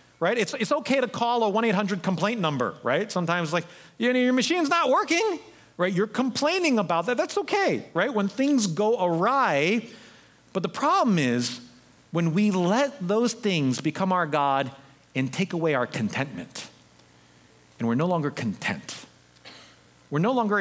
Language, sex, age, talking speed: English, male, 40-59, 165 wpm